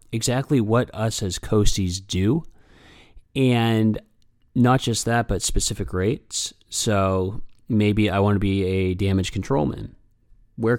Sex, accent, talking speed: male, American, 135 wpm